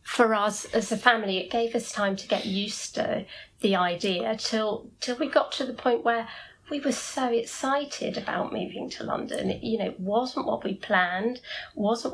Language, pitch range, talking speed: English, 200-240 Hz, 200 wpm